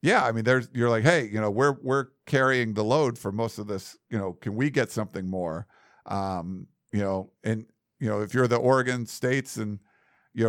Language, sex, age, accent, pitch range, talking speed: English, male, 50-69, American, 105-130 Hz, 215 wpm